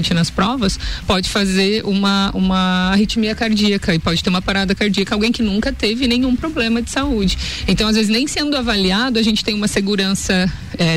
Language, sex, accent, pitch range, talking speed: Portuguese, female, Brazilian, 180-215 Hz, 185 wpm